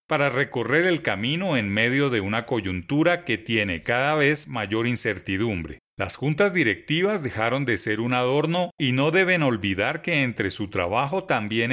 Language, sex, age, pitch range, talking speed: Spanish, male, 40-59, 115-155 Hz, 165 wpm